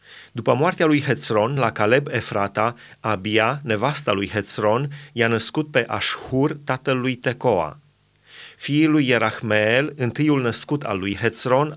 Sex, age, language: male, 30-49, Romanian